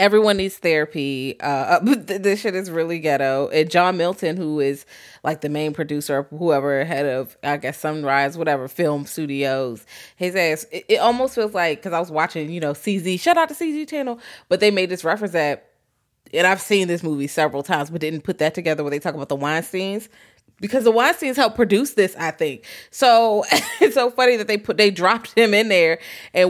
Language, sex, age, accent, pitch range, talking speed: English, female, 20-39, American, 155-205 Hz, 210 wpm